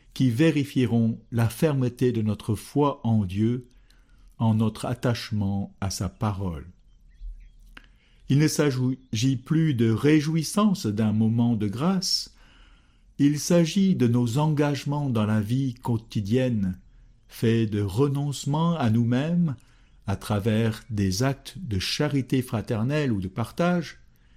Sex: male